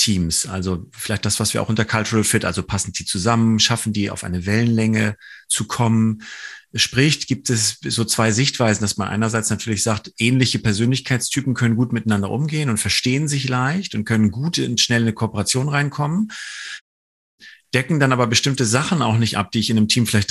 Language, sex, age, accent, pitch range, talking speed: German, male, 40-59, German, 105-130 Hz, 190 wpm